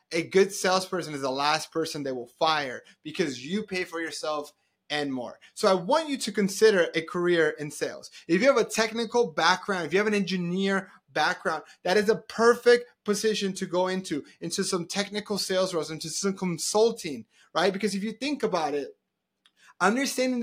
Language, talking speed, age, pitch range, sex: English, 185 wpm, 30-49, 165-210 Hz, male